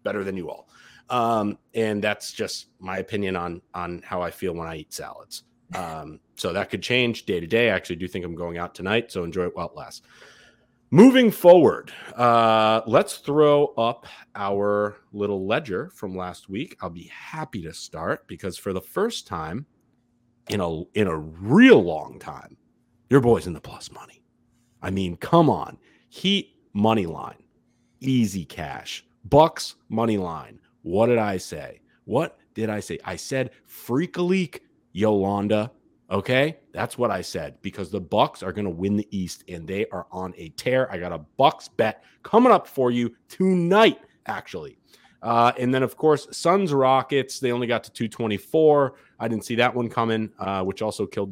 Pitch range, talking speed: 95-130 Hz, 180 wpm